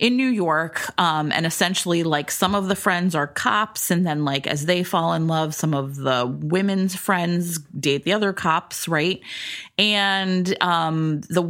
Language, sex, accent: English, female, American